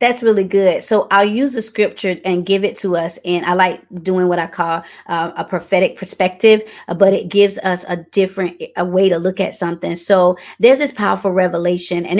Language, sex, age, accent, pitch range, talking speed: English, female, 20-39, American, 190-230 Hz, 200 wpm